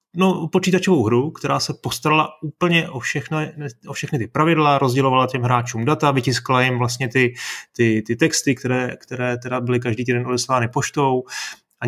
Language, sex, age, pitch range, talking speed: Czech, male, 30-49, 125-140 Hz, 165 wpm